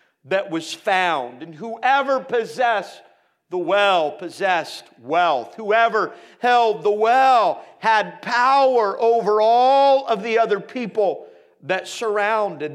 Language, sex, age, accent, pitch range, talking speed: English, male, 50-69, American, 180-235 Hz, 115 wpm